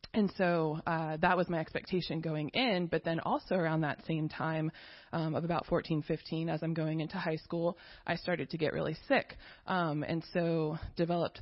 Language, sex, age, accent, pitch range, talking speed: English, female, 20-39, American, 155-180 Hz, 195 wpm